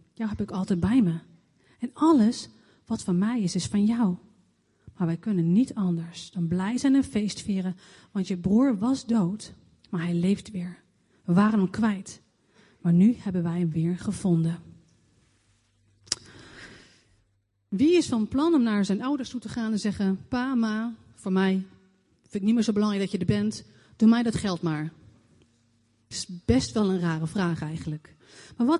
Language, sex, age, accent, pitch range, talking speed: Dutch, female, 30-49, Dutch, 170-230 Hz, 180 wpm